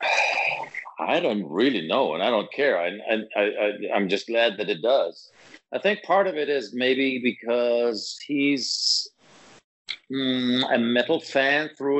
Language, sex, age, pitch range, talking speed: English, male, 50-69, 110-140 Hz, 155 wpm